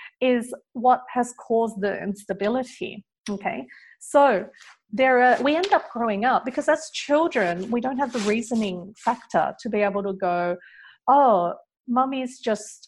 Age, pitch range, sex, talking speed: 40-59, 205-260 Hz, female, 150 wpm